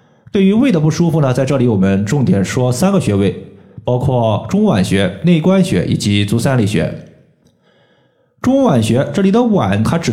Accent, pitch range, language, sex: native, 115-165 Hz, Chinese, male